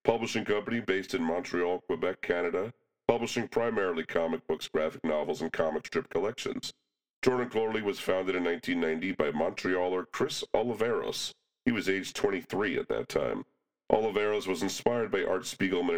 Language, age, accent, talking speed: English, 40-59, American, 145 wpm